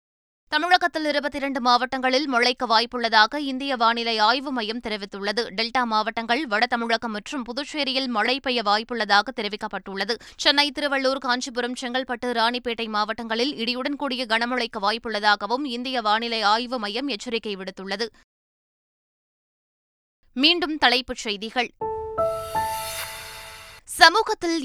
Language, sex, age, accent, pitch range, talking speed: Tamil, female, 20-39, native, 230-285 Hz, 45 wpm